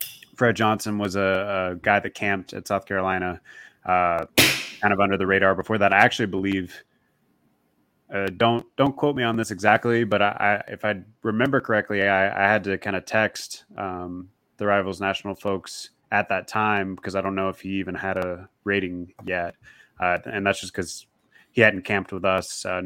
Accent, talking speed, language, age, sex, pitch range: American, 190 wpm, English, 20-39, male, 95-110 Hz